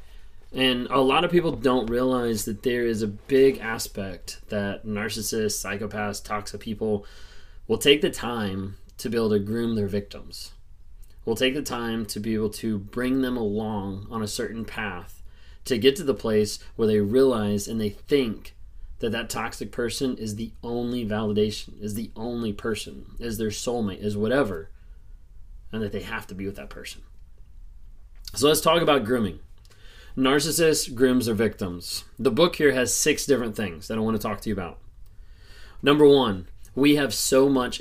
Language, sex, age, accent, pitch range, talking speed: English, male, 20-39, American, 100-130 Hz, 175 wpm